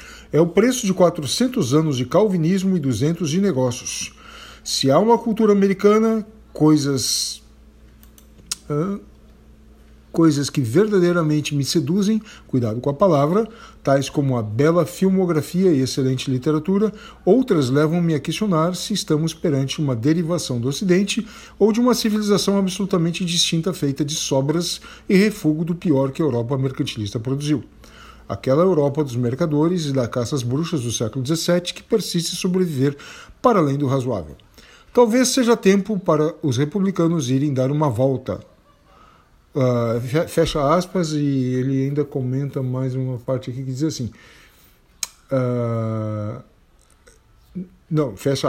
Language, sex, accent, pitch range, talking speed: Portuguese, male, Brazilian, 130-180 Hz, 140 wpm